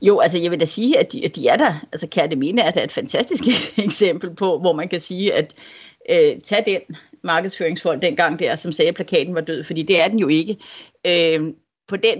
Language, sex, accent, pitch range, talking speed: Danish, female, native, 170-215 Hz, 235 wpm